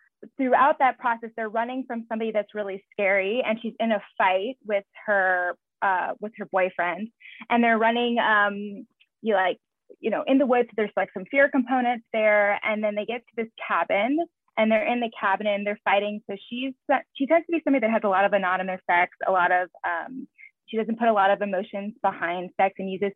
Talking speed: 210 wpm